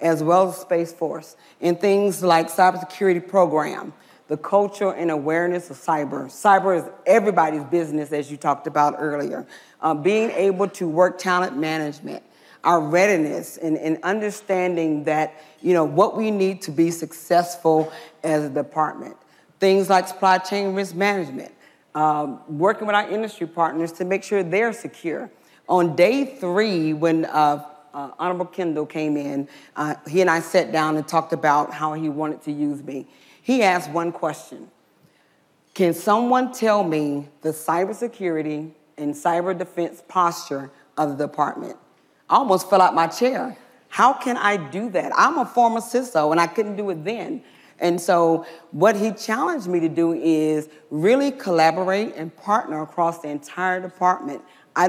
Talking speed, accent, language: 160 wpm, American, English